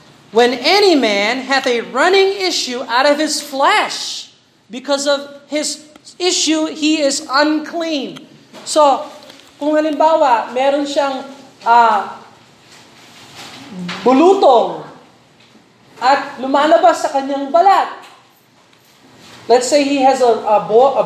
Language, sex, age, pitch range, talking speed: Filipino, male, 40-59, 240-310 Hz, 105 wpm